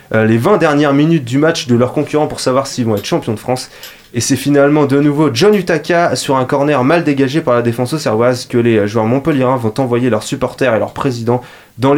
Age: 20-39